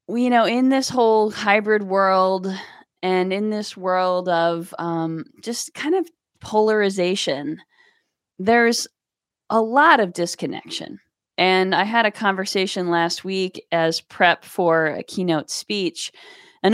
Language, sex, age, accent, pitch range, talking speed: English, female, 20-39, American, 170-215 Hz, 130 wpm